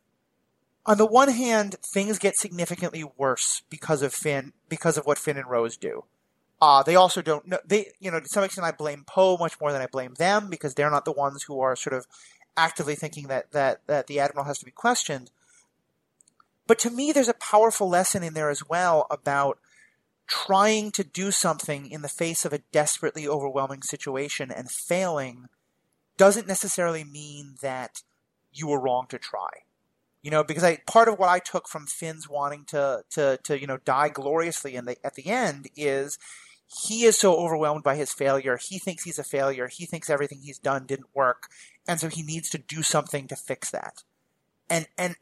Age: 30-49